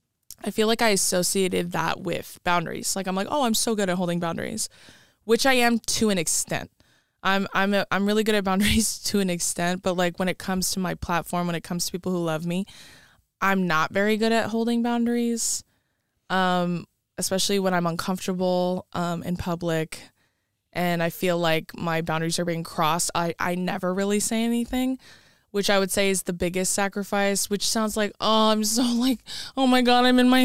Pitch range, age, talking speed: 170-210 Hz, 20-39, 200 wpm